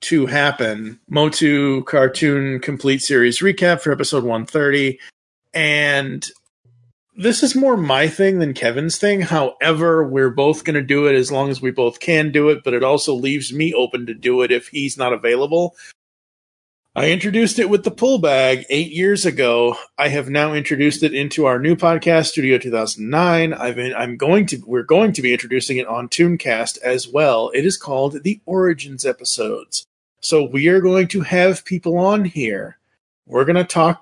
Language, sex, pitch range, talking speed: English, male, 130-165 Hz, 180 wpm